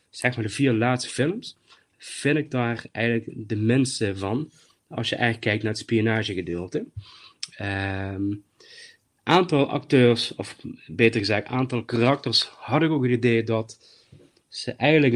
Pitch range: 110-130 Hz